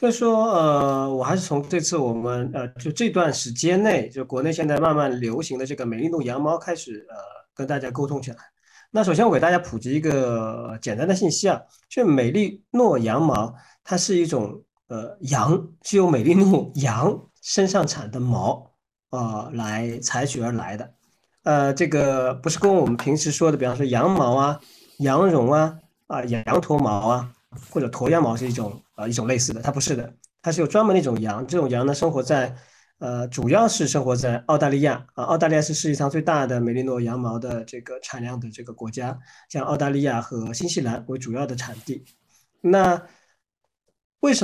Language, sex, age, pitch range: Chinese, male, 40-59, 125-170 Hz